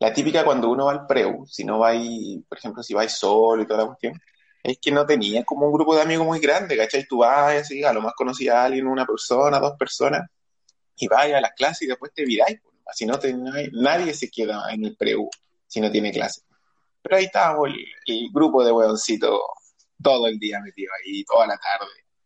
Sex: male